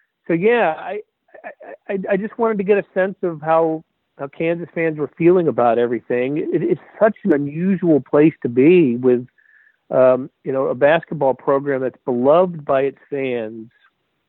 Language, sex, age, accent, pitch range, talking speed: English, male, 50-69, American, 125-170 Hz, 170 wpm